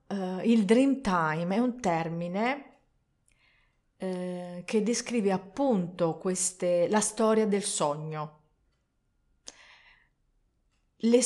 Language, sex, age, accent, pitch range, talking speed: Italian, female, 40-59, native, 165-210 Hz, 90 wpm